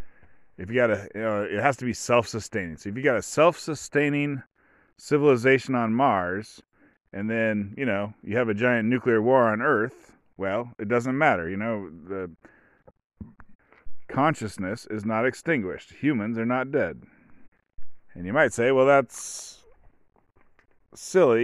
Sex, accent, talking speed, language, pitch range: male, American, 150 wpm, English, 110-140 Hz